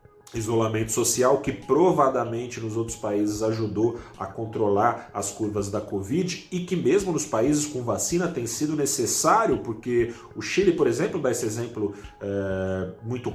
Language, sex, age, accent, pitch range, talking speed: Portuguese, male, 30-49, Brazilian, 105-155 Hz, 150 wpm